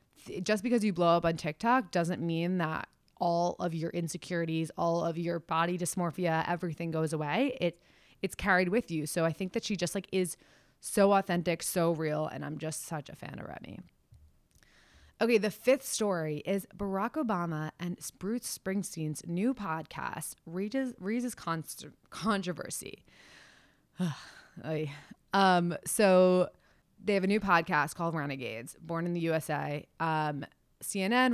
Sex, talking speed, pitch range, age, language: female, 145 wpm, 160-200 Hz, 20-39, English